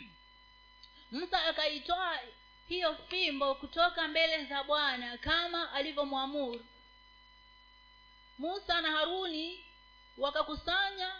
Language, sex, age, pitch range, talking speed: Swahili, female, 40-59, 285-365 Hz, 75 wpm